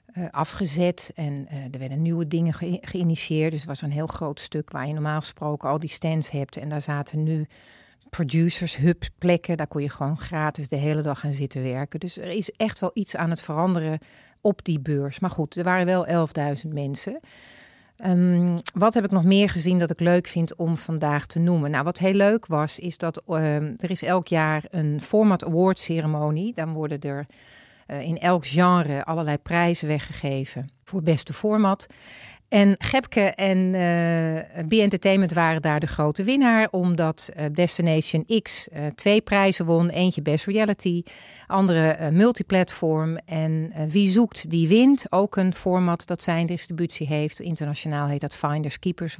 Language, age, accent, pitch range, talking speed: Dutch, 40-59, Dutch, 150-185 Hz, 180 wpm